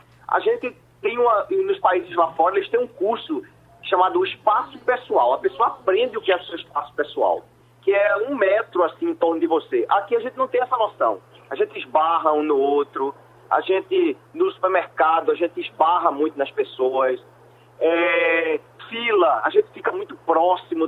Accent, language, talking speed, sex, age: Brazilian, Portuguese, 185 wpm, male, 40-59